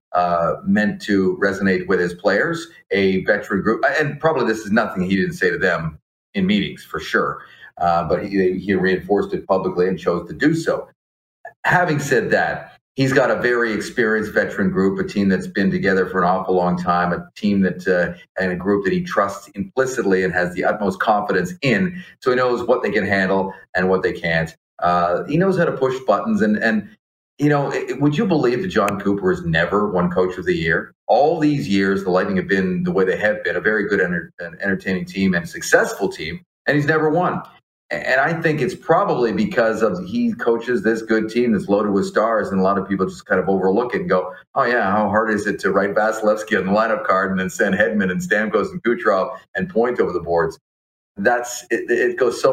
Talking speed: 220 wpm